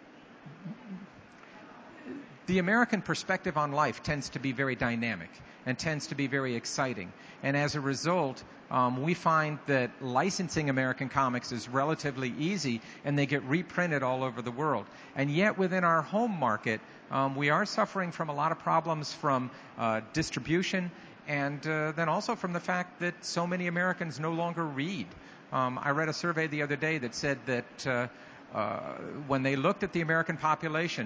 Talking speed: 175 wpm